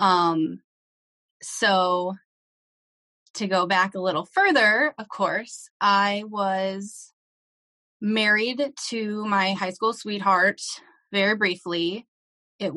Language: English